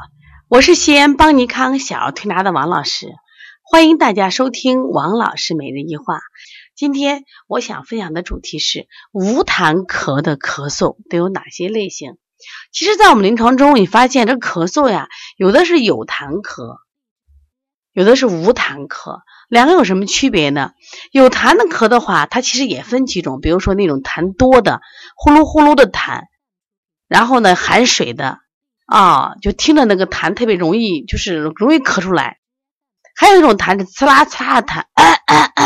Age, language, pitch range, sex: 30-49, Chinese, 180-285 Hz, female